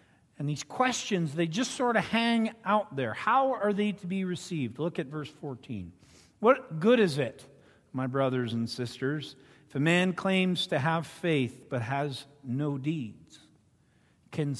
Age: 50-69